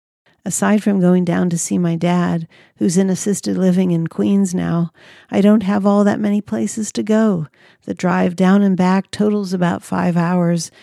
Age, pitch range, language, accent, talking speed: 50-69, 165-195 Hz, English, American, 185 wpm